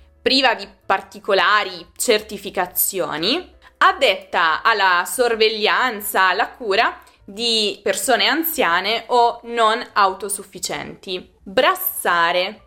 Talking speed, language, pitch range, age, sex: 75 wpm, Italian, 190-275 Hz, 20-39, female